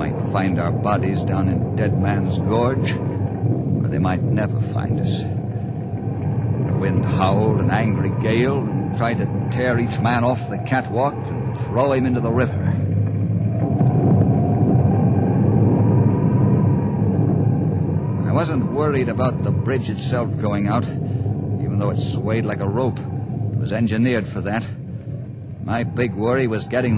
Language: English